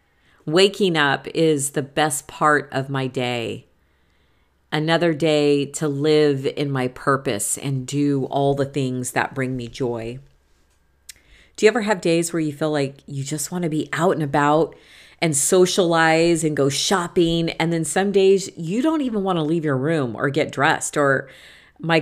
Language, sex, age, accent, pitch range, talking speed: English, female, 40-59, American, 135-175 Hz, 175 wpm